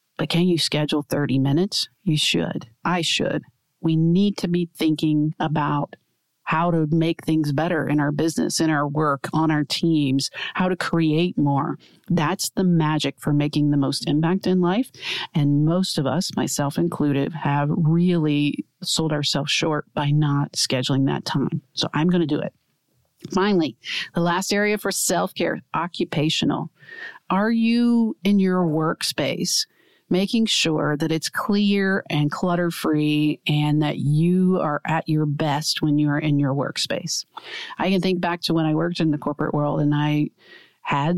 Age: 40-59